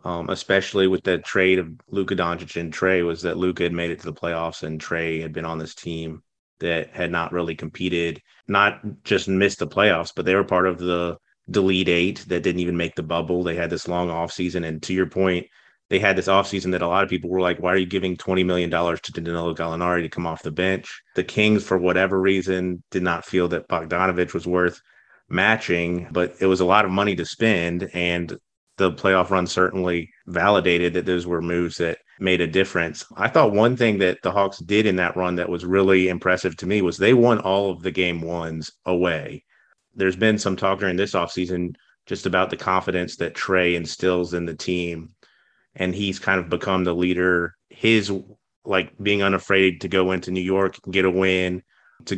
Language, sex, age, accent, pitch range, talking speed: English, male, 30-49, American, 85-95 Hz, 210 wpm